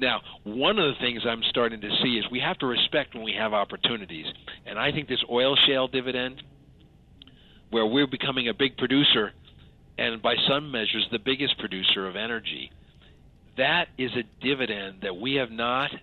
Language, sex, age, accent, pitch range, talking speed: English, male, 50-69, American, 105-135 Hz, 180 wpm